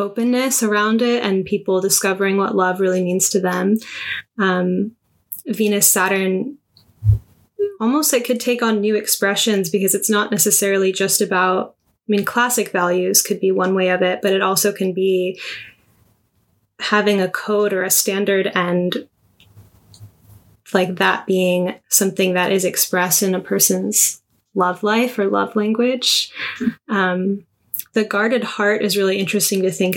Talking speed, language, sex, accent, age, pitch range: 150 wpm, English, female, American, 10-29, 185-215 Hz